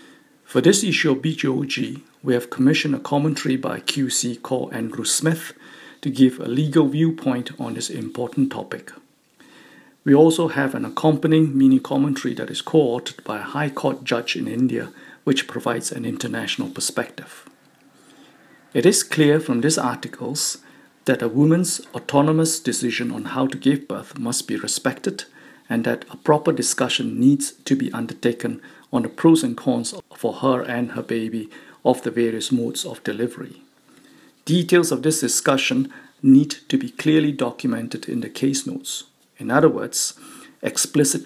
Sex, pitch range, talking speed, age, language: male, 130-160 Hz, 155 wpm, 50-69, English